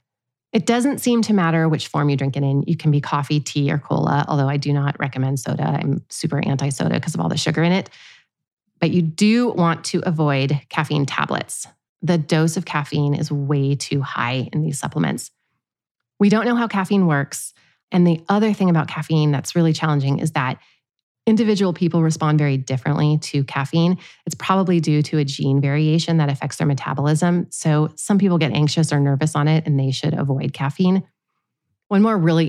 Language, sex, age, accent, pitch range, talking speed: English, female, 30-49, American, 145-170 Hz, 195 wpm